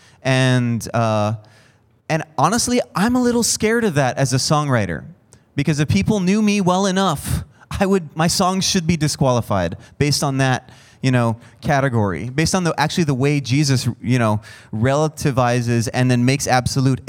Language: English